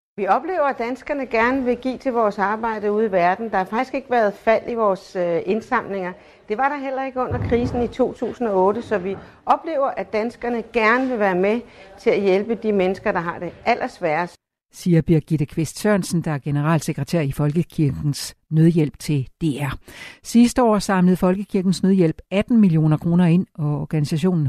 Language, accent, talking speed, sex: Danish, native, 175 wpm, female